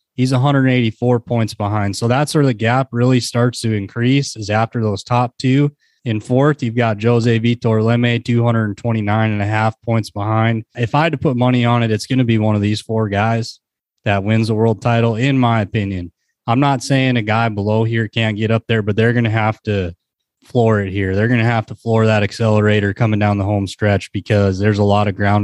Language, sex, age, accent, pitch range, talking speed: English, male, 20-39, American, 110-125 Hz, 225 wpm